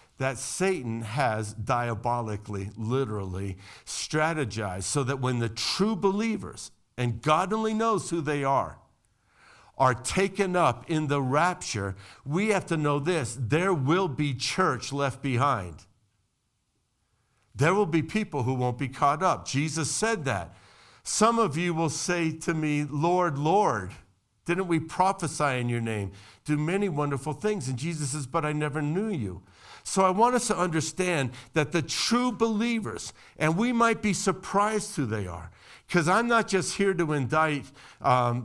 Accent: American